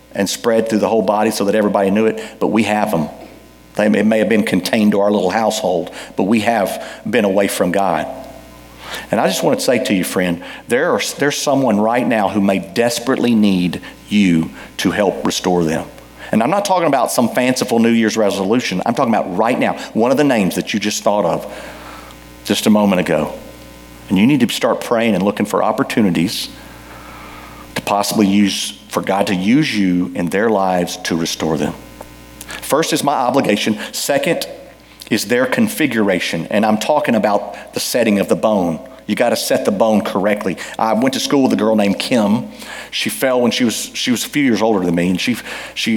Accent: American